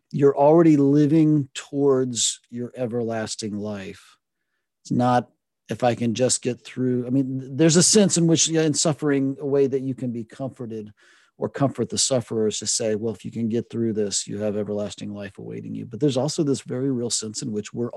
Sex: male